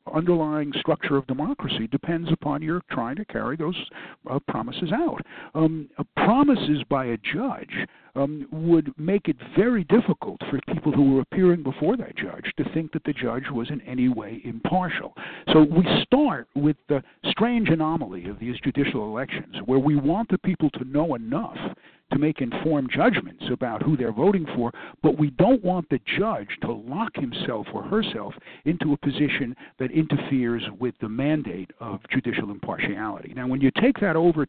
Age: 60-79